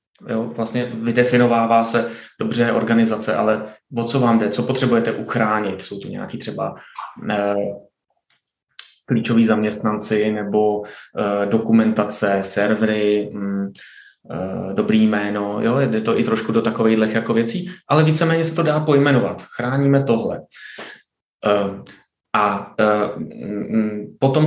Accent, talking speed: native, 120 wpm